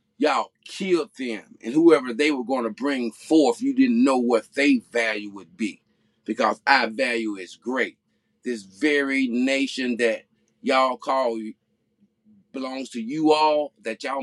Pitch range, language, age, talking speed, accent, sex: 110-180 Hz, English, 30-49, 150 wpm, American, male